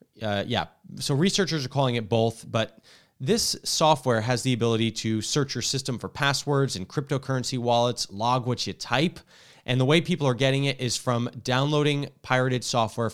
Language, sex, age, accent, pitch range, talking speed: English, male, 20-39, American, 110-140 Hz, 180 wpm